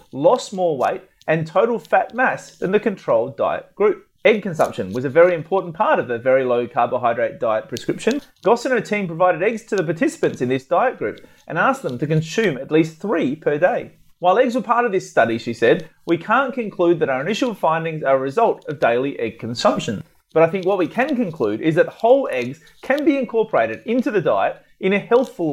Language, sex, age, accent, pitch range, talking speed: English, male, 30-49, Australian, 160-235 Hz, 215 wpm